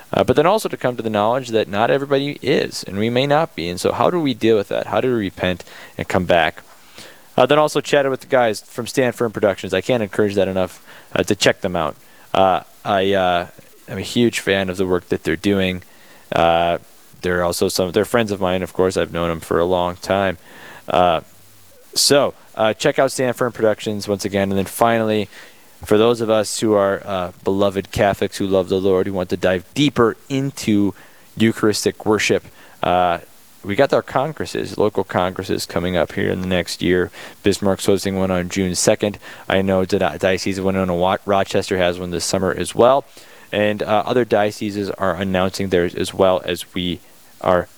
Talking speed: 200 wpm